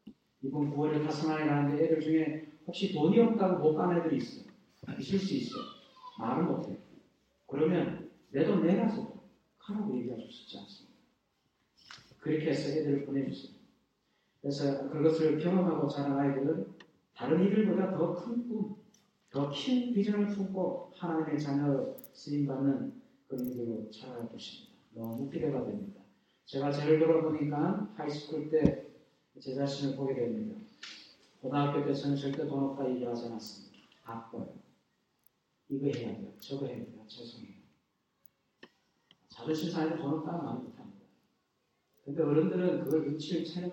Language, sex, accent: Korean, male, native